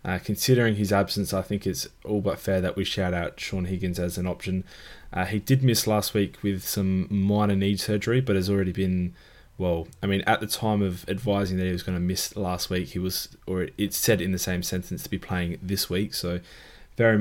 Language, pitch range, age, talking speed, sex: English, 90-105 Hz, 20-39, 230 wpm, male